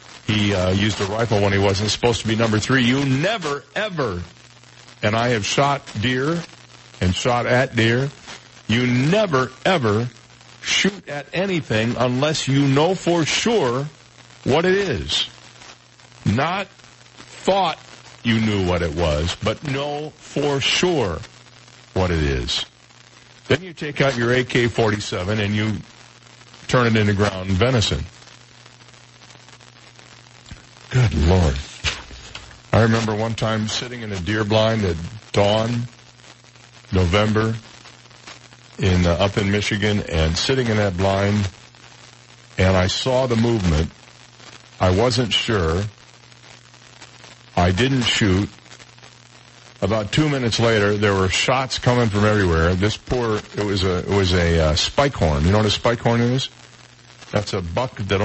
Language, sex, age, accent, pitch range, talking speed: English, male, 50-69, American, 100-125 Hz, 135 wpm